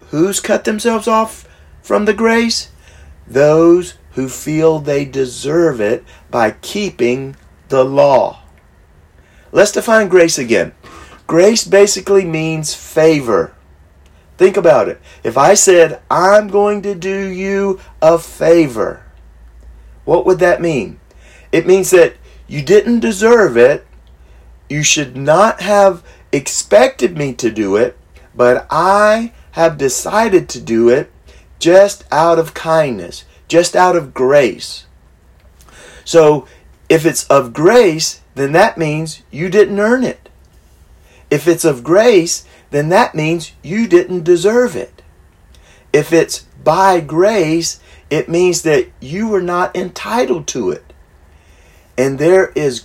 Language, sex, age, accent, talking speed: English, male, 40-59, American, 125 wpm